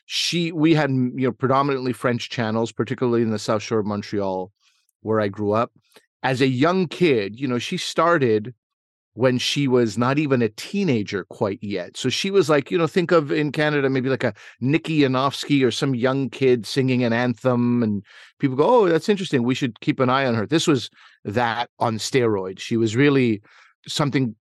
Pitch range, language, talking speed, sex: 120-150 Hz, English, 195 wpm, male